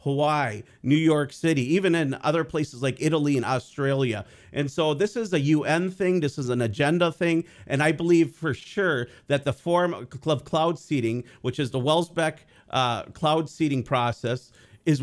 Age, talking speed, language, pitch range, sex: 40-59, 175 wpm, English, 130-165 Hz, male